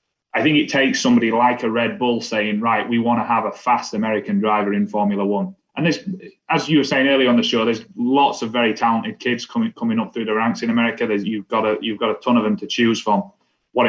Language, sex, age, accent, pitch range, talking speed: English, male, 20-39, British, 100-135 Hz, 260 wpm